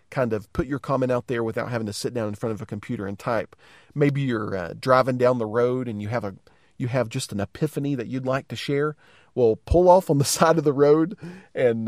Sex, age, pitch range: male, 40-59, 105-150 Hz